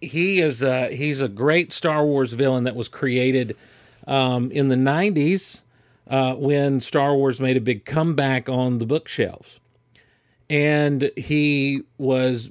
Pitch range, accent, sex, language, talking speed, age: 125-150 Hz, American, male, English, 145 wpm, 40-59